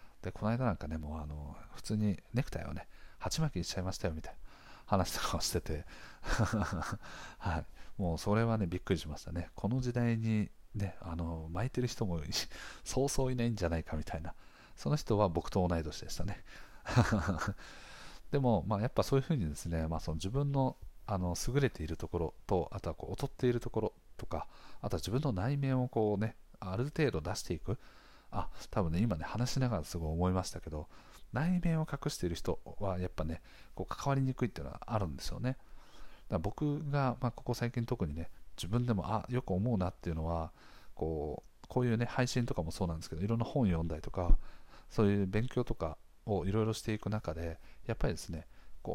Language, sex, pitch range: Japanese, male, 85-125 Hz